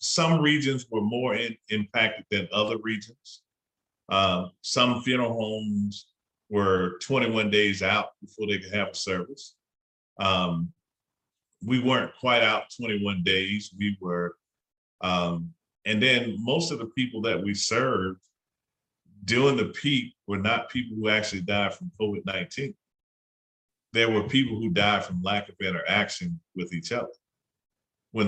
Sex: male